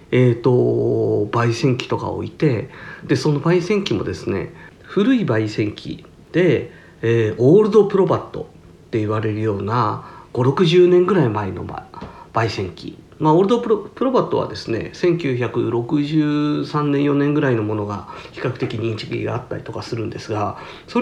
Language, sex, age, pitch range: Japanese, male, 50-69, 115-155 Hz